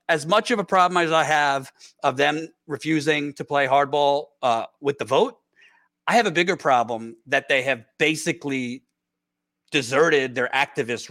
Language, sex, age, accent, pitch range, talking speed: English, male, 40-59, American, 135-180 Hz, 160 wpm